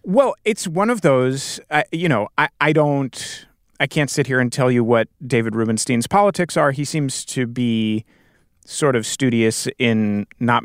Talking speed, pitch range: 180 wpm, 115-150 Hz